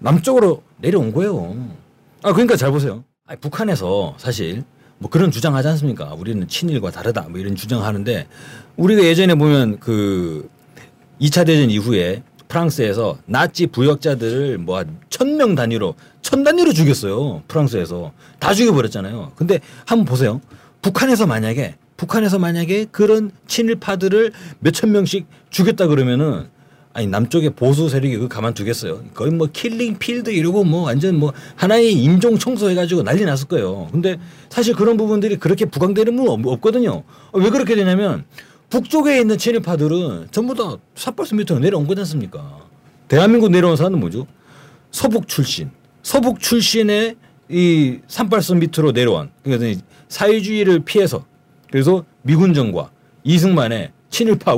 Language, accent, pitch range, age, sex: Korean, native, 135-200 Hz, 40-59, male